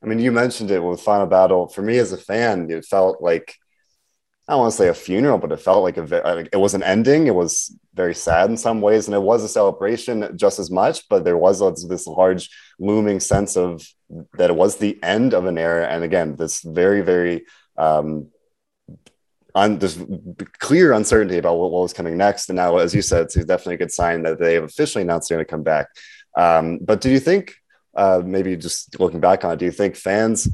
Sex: male